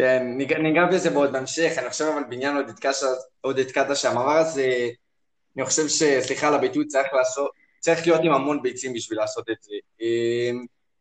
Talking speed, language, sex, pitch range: 170 wpm, Hebrew, male, 125-155 Hz